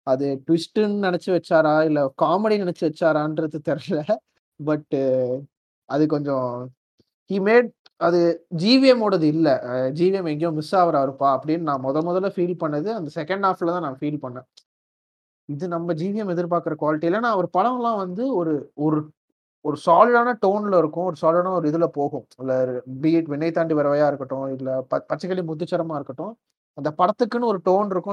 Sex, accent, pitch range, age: male, native, 150-195 Hz, 30-49